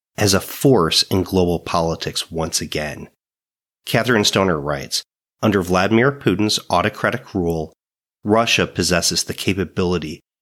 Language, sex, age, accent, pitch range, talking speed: English, male, 30-49, American, 90-110 Hz, 115 wpm